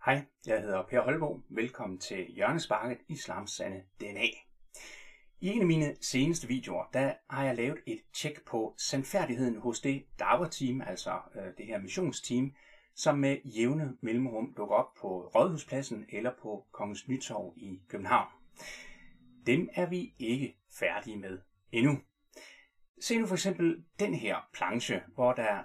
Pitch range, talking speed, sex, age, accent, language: 110-160 Hz, 145 wpm, male, 30-49, native, Danish